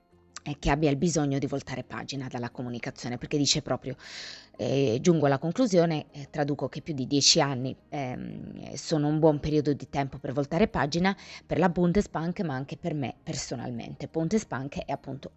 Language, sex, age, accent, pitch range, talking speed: Italian, female, 20-39, native, 135-165 Hz, 170 wpm